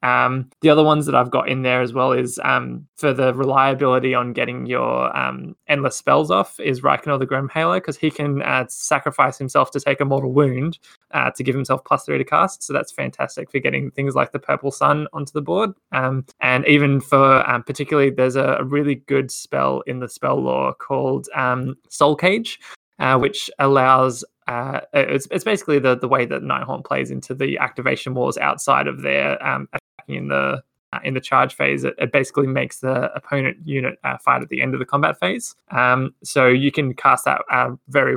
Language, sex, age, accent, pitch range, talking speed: English, male, 20-39, Australian, 125-145 Hz, 205 wpm